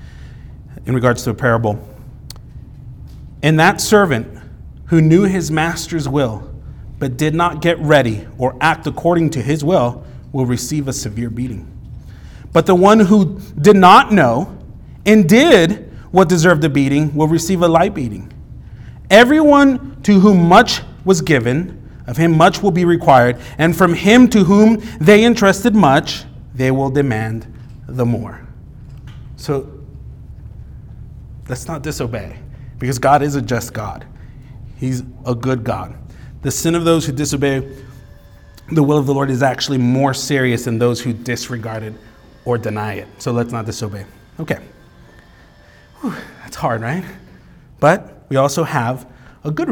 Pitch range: 120-165 Hz